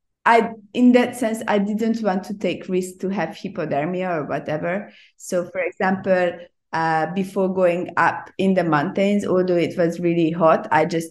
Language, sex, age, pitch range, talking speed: English, female, 20-39, 180-220 Hz, 175 wpm